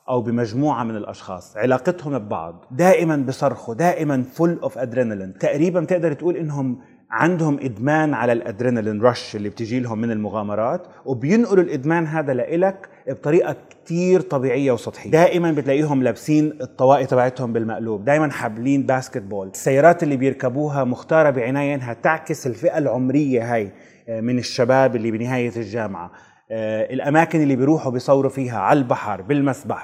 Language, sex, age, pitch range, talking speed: Arabic, male, 30-49, 120-165 Hz, 135 wpm